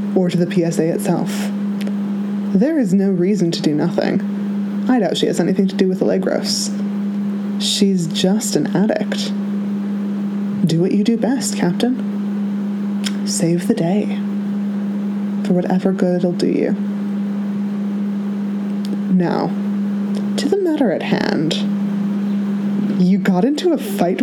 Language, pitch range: English, 190-205 Hz